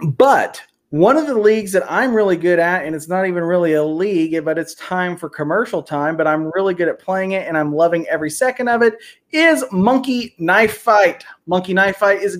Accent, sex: American, male